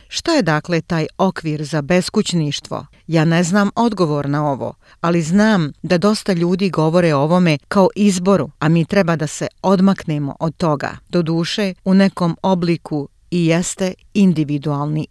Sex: female